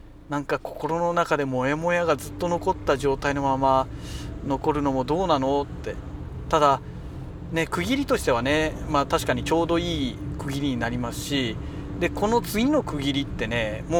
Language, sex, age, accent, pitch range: Japanese, male, 40-59, native, 110-175 Hz